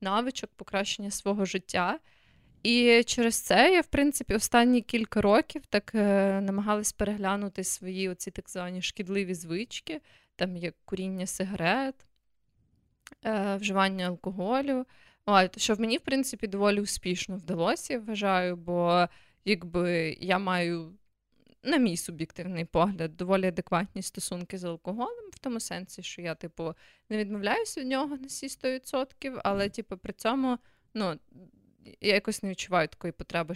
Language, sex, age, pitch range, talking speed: Ukrainian, female, 20-39, 175-230 Hz, 135 wpm